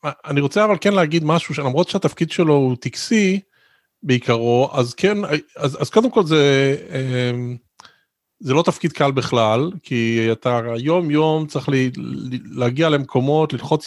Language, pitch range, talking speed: Hebrew, 125-165 Hz, 140 wpm